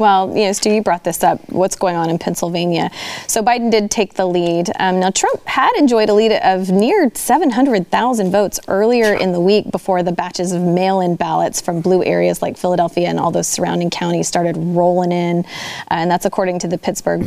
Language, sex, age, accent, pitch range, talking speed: English, female, 30-49, American, 175-220 Hz, 210 wpm